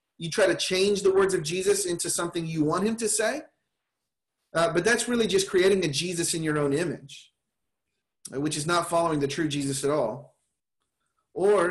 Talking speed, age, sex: 190 wpm, 30-49, male